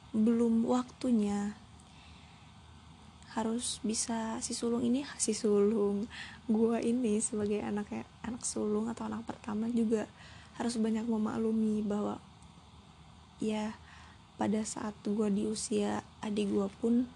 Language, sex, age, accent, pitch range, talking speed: Indonesian, female, 20-39, native, 210-230 Hz, 110 wpm